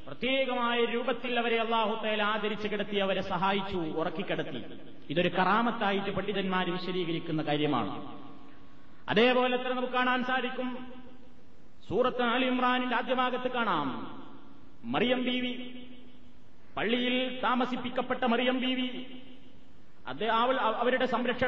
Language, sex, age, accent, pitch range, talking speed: Malayalam, male, 30-49, native, 230-255 Hz, 100 wpm